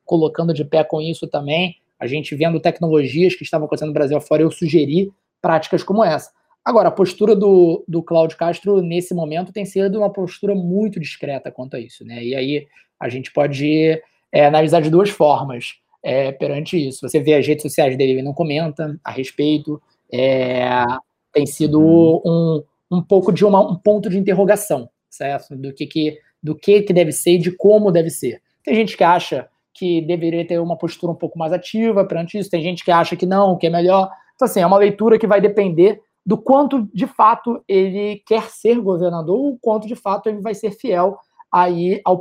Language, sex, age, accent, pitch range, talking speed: Portuguese, male, 20-39, Brazilian, 155-205 Hz, 190 wpm